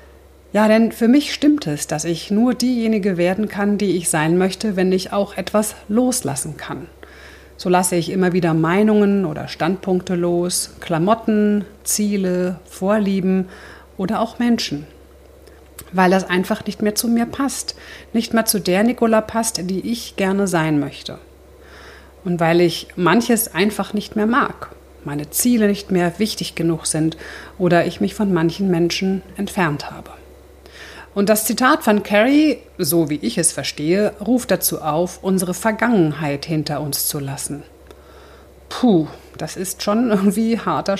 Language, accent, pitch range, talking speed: German, German, 165-210 Hz, 150 wpm